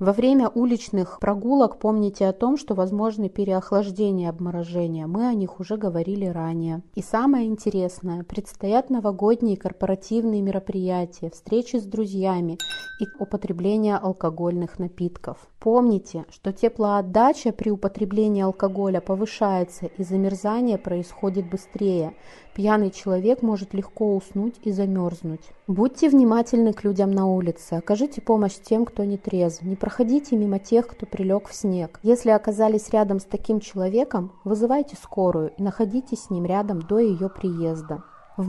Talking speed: 135 wpm